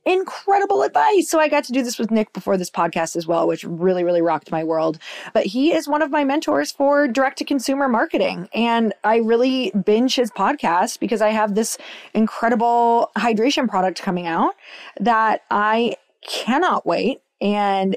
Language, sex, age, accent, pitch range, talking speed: English, female, 20-39, American, 185-240 Hz, 175 wpm